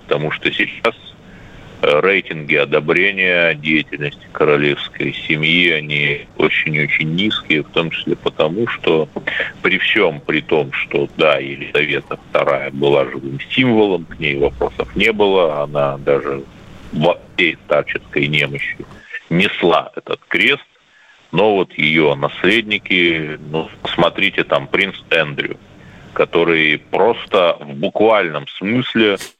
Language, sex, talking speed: Russian, male, 110 wpm